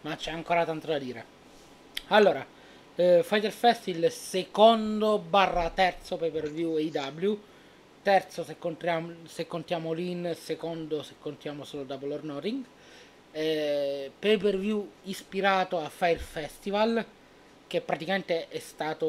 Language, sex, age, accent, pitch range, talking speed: Italian, male, 30-49, native, 145-175 Hz, 130 wpm